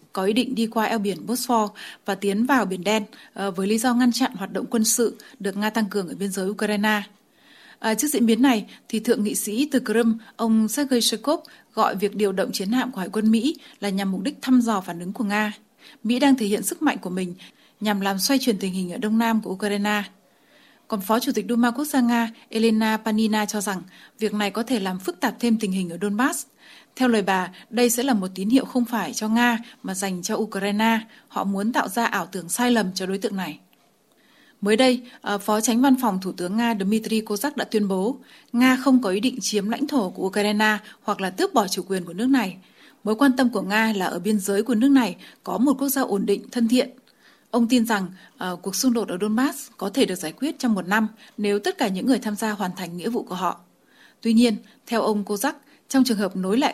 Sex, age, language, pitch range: female, 20-39, Vietnamese, 200-245 Hz